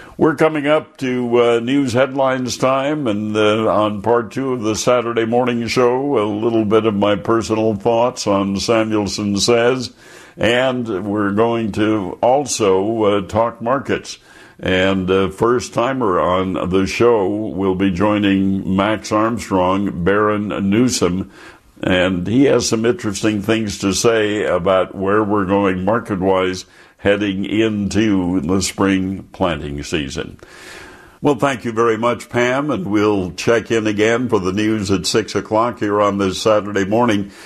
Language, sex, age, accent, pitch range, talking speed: English, male, 60-79, American, 95-120 Hz, 145 wpm